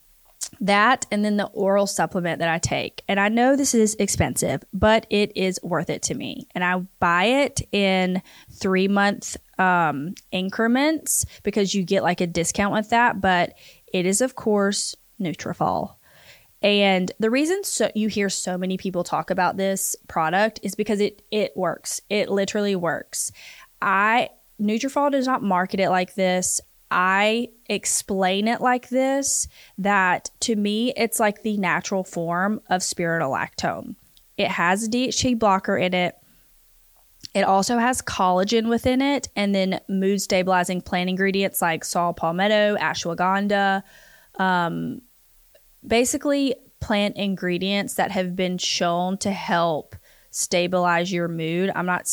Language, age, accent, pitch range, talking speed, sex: English, 20-39, American, 180-215 Hz, 145 wpm, female